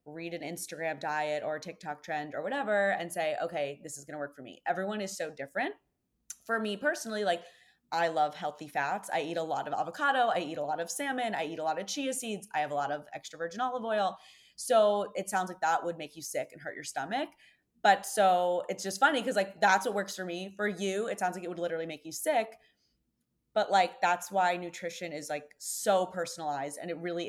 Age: 20-39